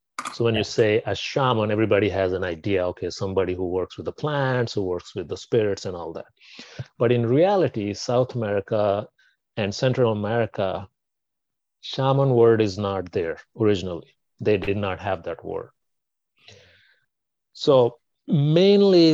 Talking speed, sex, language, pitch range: 145 wpm, male, English, 95-120 Hz